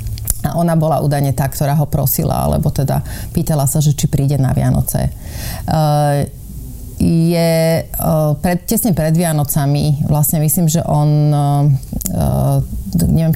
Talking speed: 120 wpm